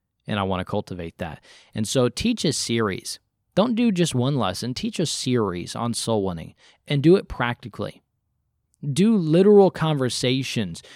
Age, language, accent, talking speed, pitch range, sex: 20-39, English, American, 160 wpm, 110-145 Hz, male